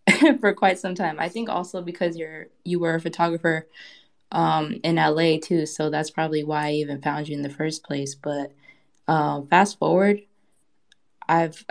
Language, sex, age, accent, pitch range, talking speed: English, female, 20-39, American, 145-170 Hz, 185 wpm